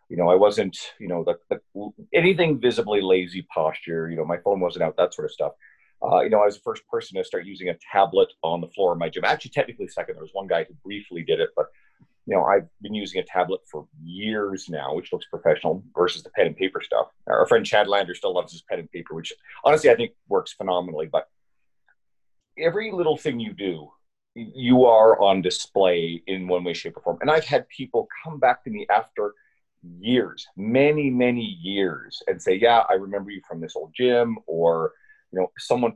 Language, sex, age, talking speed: English, male, 40-59, 215 wpm